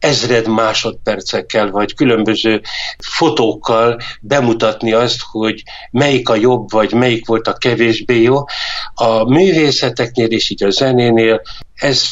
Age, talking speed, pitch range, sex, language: 60-79, 120 wpm, 110-130 Hz, male, Hungarian